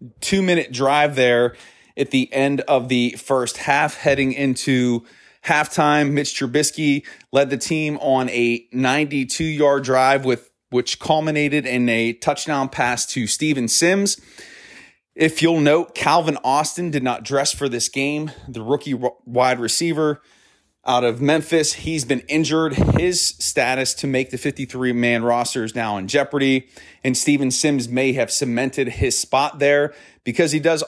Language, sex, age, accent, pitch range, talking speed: English, male, 30-49, American, 125-150 Hz, 150 wpm